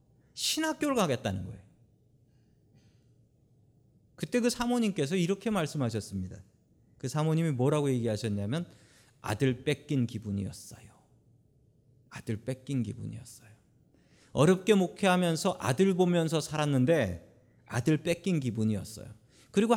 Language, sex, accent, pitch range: Korean, male, native, 115-175 Hz